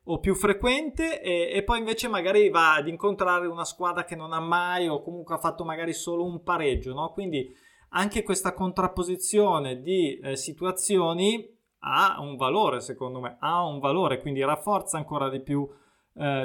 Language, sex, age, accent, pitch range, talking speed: Italian, male, 20-39, native, 140-175 Hz, 170 wpm